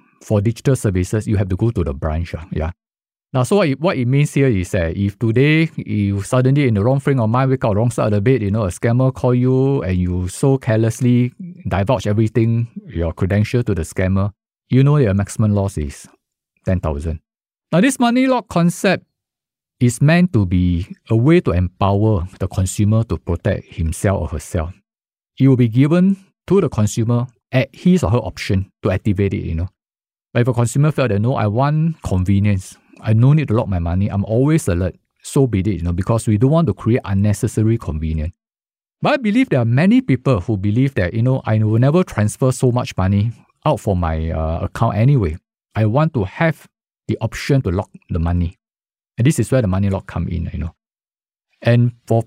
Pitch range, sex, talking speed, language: 95-130 Hz, male, 210 wpm, English